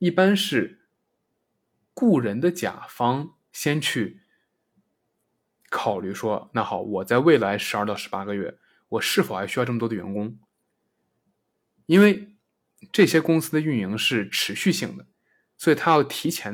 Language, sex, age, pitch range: Chinese, male, 20-39, 115-180 Hz